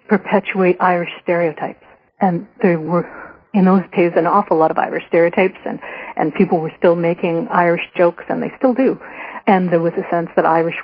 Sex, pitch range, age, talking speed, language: female, 165-195 Hz, 50-69, 190 wpm, English